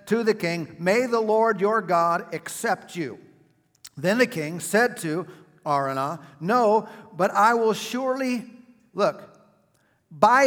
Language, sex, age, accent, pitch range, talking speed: English, male, 50-69, American, 180-230 Hz, 130 wpm